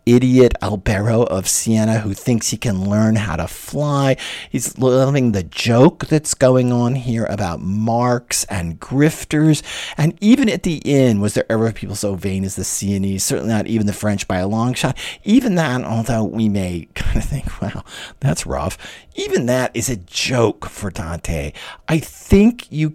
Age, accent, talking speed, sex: 50-69, American, 180 wpm, male